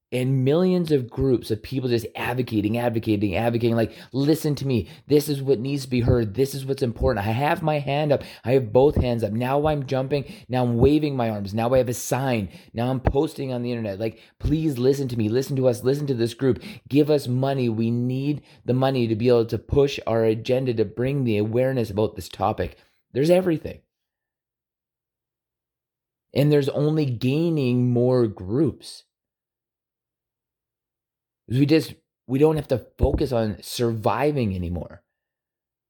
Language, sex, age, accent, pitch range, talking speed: English, male, 20-39, American, 115-140 Hz, 175 wpm